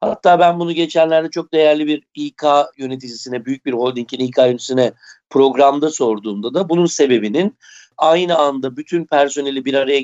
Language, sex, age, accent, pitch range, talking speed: Turkish, male, 60-79, native, 140-170 Hz, 150 wpm